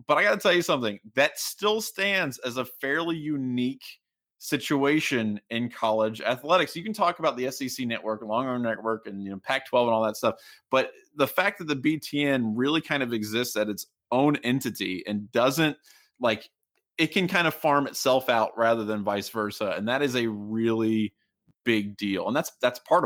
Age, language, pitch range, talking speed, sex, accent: 20-39, English, 110-150 Hz, 200 wpm, male, American